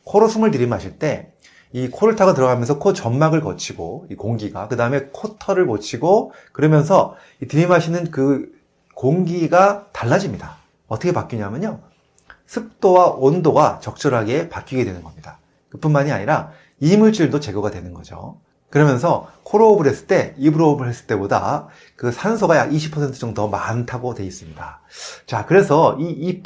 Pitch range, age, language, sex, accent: 115-175 Hz, 30-49, Korean, male, native